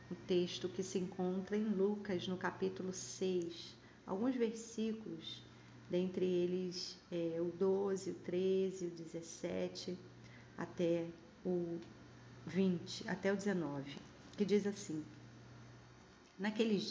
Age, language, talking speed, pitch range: 40-59, Portuguese, 110 wpm, 170-205 Hz